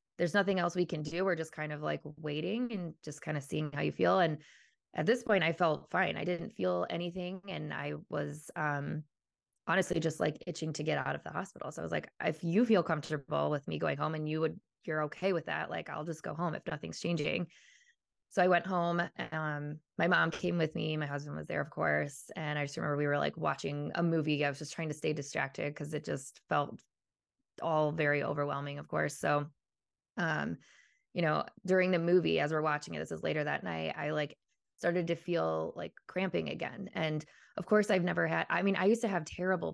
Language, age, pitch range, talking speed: English, 20-39, 150-180 Hz, 230 wpm